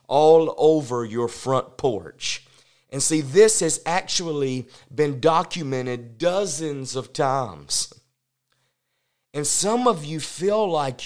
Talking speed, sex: 115 wpm, male